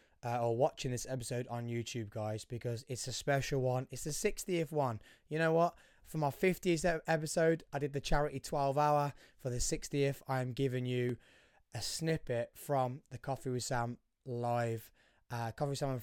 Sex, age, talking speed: male, 20-39, 185 wpm